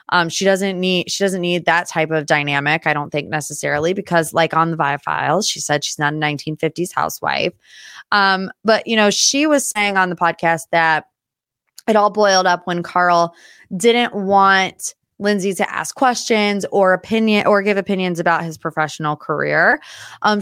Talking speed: 180 wpm